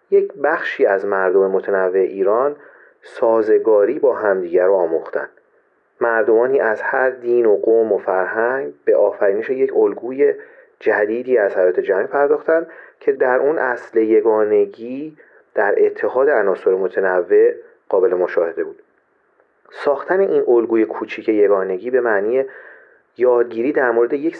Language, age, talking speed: Persian, 40-59, 125 wpm